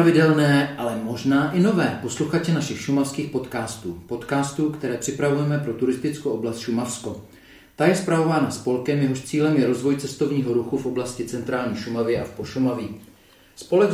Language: Czech